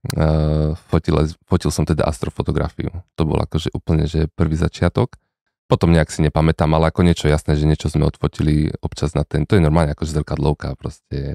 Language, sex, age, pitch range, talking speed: Slovak, male, 30-49, 75-85 Hz, 180 wpm